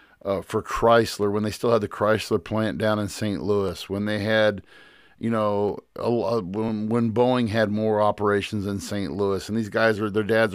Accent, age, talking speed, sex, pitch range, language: American, 50-69, 195 wpm, male, 100-120 Hz, English